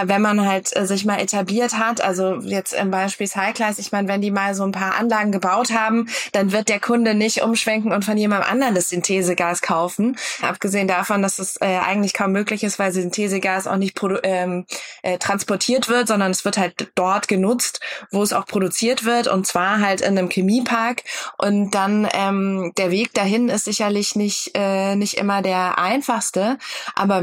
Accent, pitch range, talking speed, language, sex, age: German, 190-210 Hz, 185 wpm, German, female, 20-39